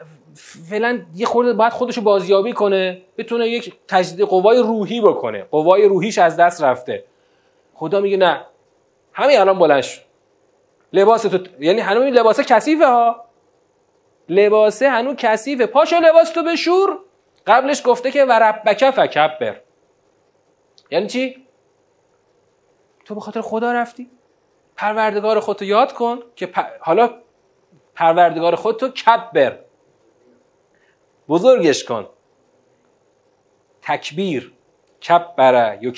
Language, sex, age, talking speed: Persian, male, 30-49, 110 wpm